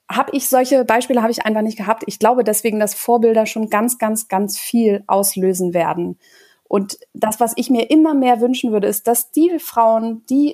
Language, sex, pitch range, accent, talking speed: German, female, 210-245 Hz, German, 200 wpm